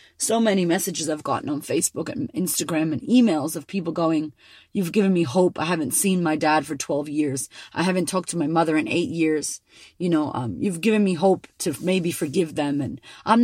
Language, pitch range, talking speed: English, 165-210 Hz, 215 wpm